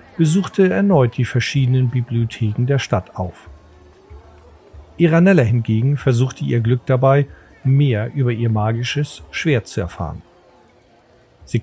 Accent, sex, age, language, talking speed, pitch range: German, male, 40-59, German, 115 wpm, 110-140 Hz